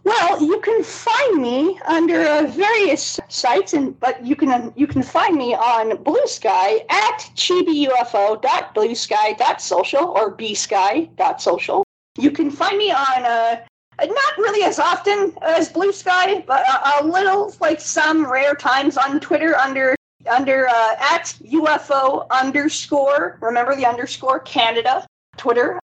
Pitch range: 255-345 Hz